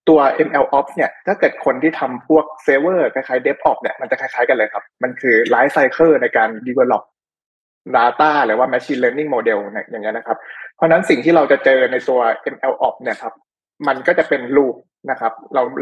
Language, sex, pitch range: Thai, male, 130-165 Hz